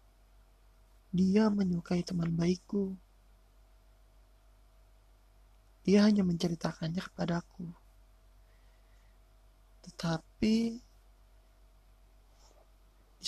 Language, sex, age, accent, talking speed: Indonesian, male, 20-39, native, 45 wpm